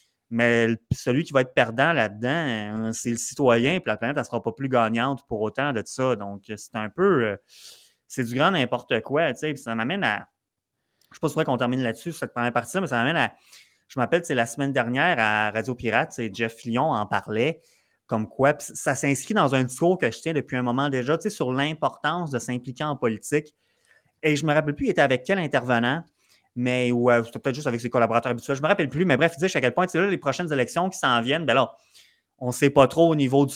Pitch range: 120-150 Hz